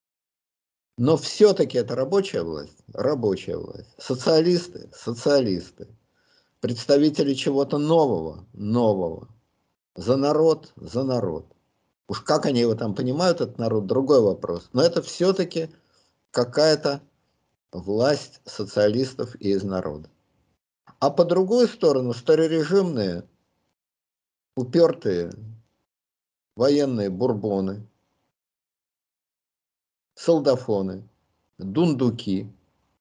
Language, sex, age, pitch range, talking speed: Russian, male, 50-69, 105-155 Hz, 85 wpm